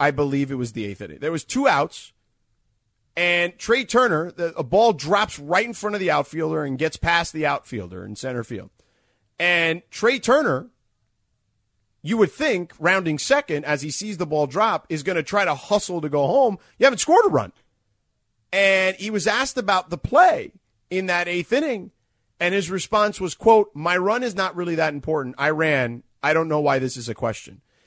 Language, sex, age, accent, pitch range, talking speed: English, male, 30-49, American, 140-215 Hz, 200 wpm